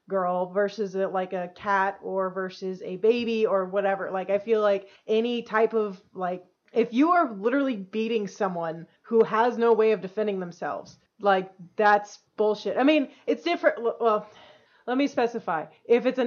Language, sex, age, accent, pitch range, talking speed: English, female, 30-49, American, 195-230 Hz, 170 wpm